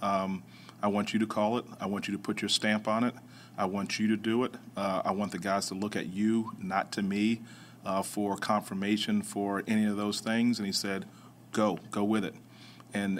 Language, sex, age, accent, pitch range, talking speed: English, male, 40-59, American, 100-110 Hz, 225 wpm